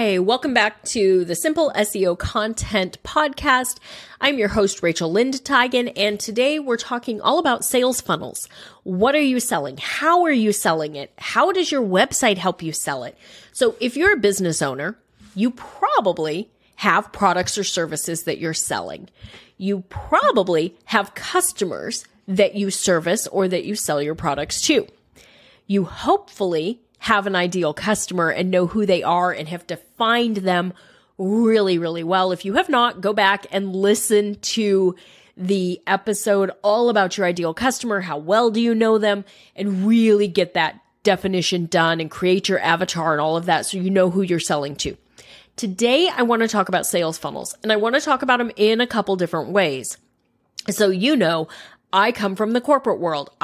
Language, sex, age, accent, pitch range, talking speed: English, female, 30-49, American, 180-230 Hz, 175 wpm